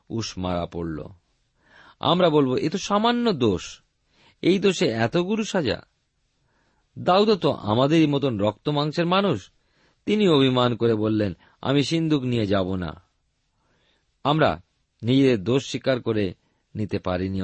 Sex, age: male, 50-69